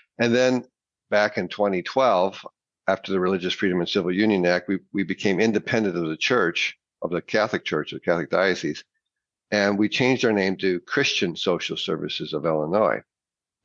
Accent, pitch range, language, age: American, 90-110 Hz, English, 50-69